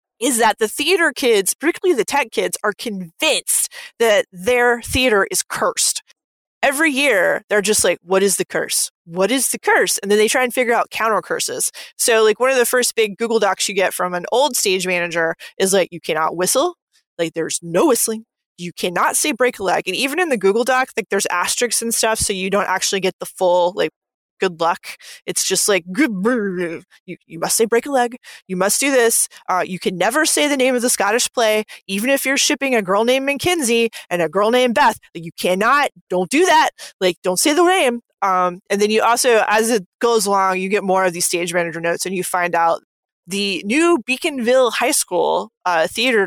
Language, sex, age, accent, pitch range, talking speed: English, female, 20-39, American, 185-255 Hz, 215 wpm